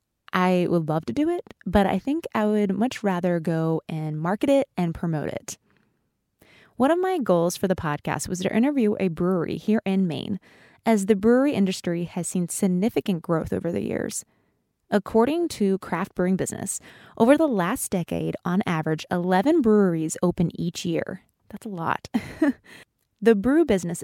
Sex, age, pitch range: female, 20-39, 175-230 Hz